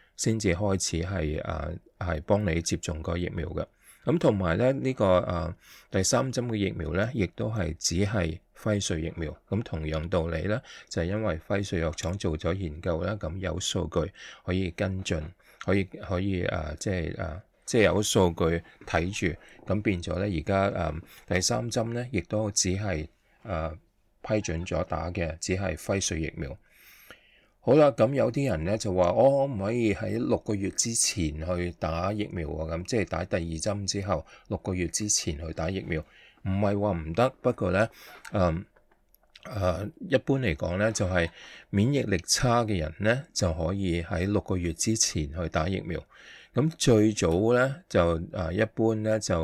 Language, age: English, 20-39